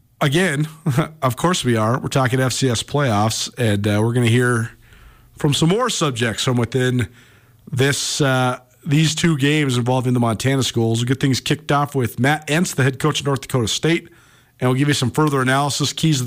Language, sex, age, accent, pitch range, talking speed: English, male, 40-59, American, 120-150 Hz, 200 wpm